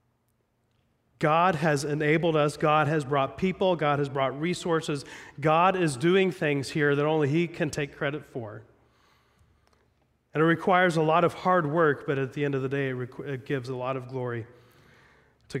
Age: 30-49